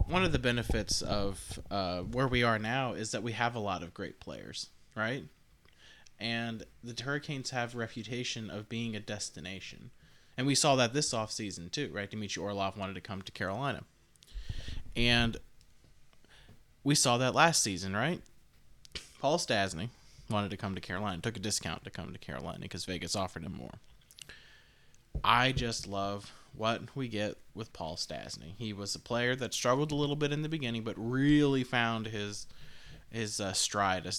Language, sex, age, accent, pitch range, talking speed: English, male, 20-39, American, 100-120 Hz, 175 wpm